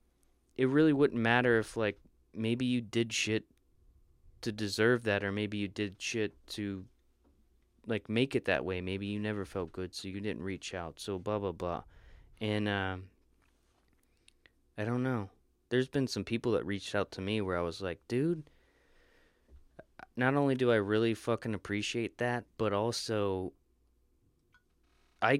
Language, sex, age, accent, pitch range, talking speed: English, male, 20-39, American, 80-110 Hz, 160 wpm